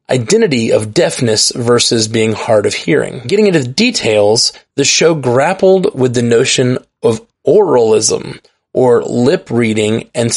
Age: 20-39